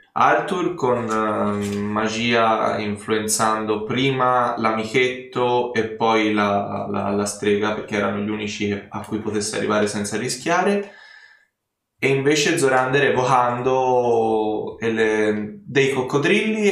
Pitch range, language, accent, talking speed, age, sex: 105-125 Hz, Italian, native, 110 wpm, 10-29, male